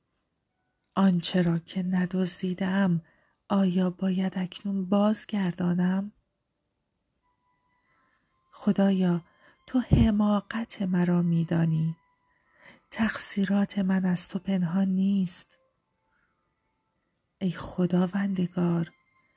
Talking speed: 65 wpm